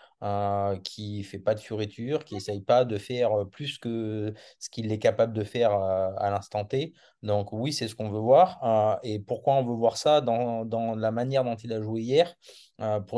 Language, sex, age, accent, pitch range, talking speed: French, male, 20-39, French, 105-120 Hz, 225 wpm